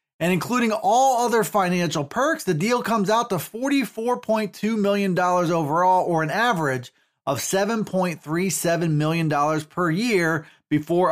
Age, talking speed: 30-49, 125 wpm